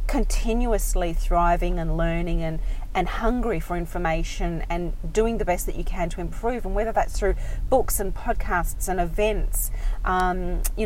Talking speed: 160 wpm